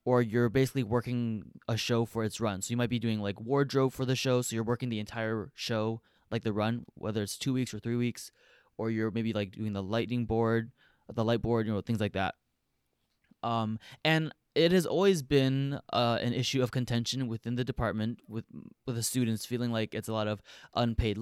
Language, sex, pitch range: English, male, 115-130 Hz